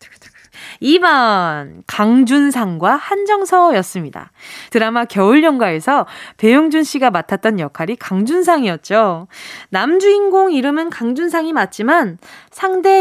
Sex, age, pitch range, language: female, 20-39, 210-355 Hz, Korean